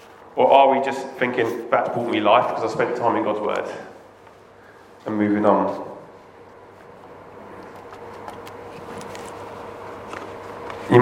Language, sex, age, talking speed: English, male, 30-49, 110 wpm